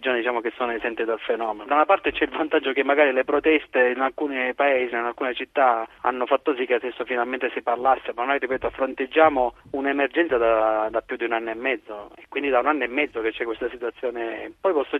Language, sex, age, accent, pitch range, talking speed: Italian, male, 30-49, native, 115-130 Hz, 225 wpm